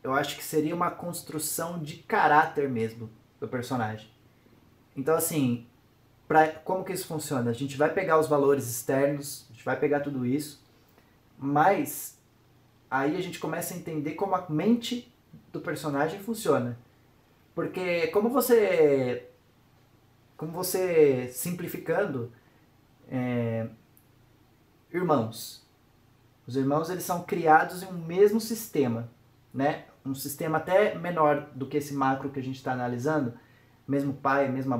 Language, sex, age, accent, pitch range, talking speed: Portuguese, male, 20-39, Brazilian, 125-160 Hz, 130 wpm